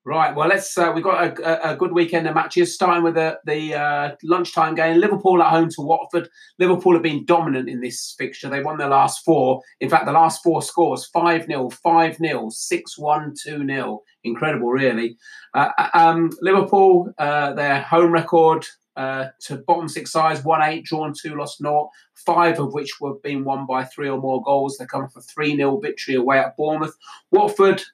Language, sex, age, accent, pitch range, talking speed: English, male, 30-49, British, 135-165 Hz, 185 wpm